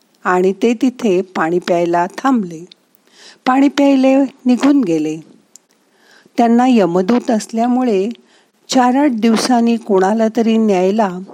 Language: Marathi